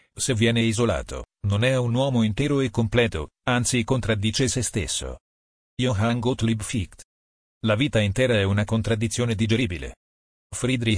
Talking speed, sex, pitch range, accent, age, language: 135 wpm, male, 95-120 Hz, native, 40-59, Italian